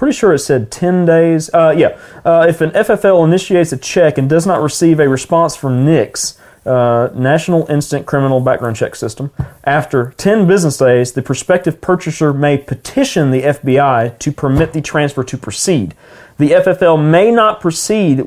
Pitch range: 135-180 Hz